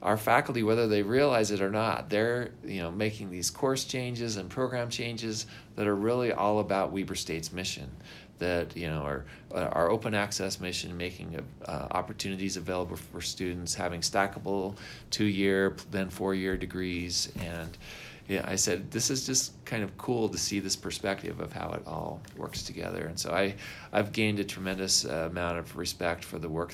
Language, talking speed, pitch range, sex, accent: English, 180 wpm, 85-105 Hz, male, American